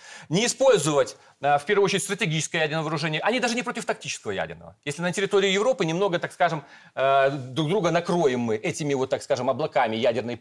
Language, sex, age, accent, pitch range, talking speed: Russian, male, 30-49, native, 160-215 Hz, 180 wpm